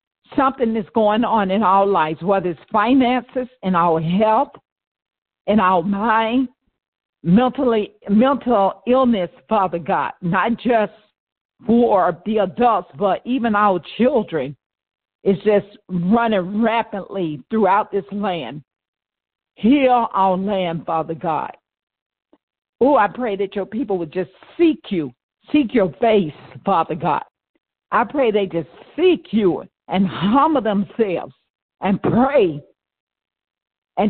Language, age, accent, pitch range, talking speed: English, 50-69, American, 190-245 Hz, 120 wpm